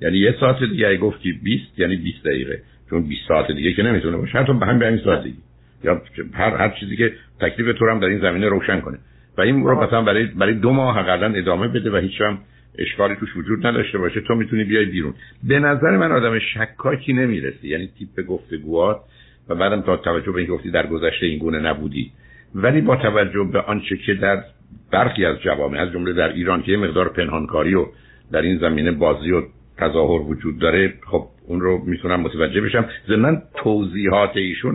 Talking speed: 195 wpm